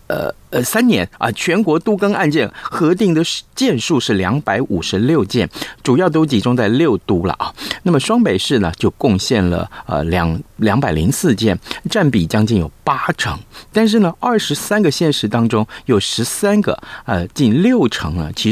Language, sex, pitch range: Chinese, male, 95-155 Hz